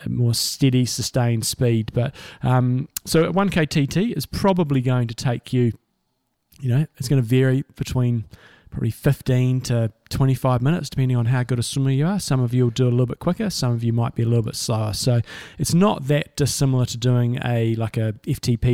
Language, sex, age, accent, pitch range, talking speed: English, male, 20-39, Australian, 120-135 Hz, 215 wpm